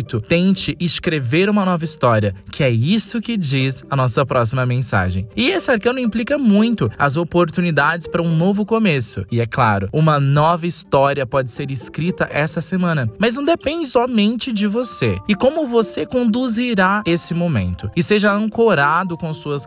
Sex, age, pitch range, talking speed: male, 20-39, 135-205 Hz, 160 wpm